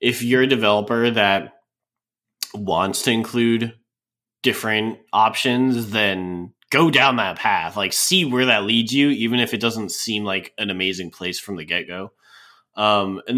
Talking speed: 160 wpm